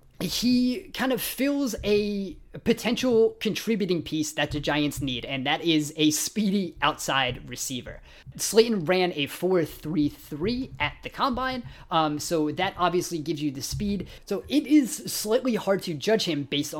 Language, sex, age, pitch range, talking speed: English, male, 20-39, 150-205 Hz, 155 wpm